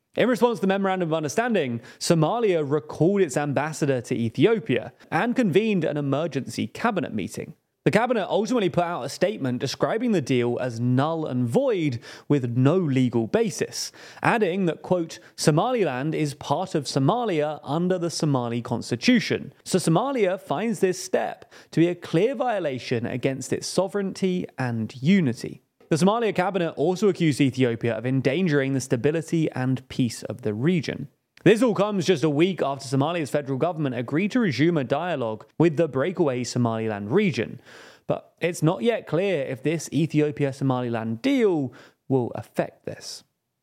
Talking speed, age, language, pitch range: 155 wpm, 30-49, English, 130-185 Hz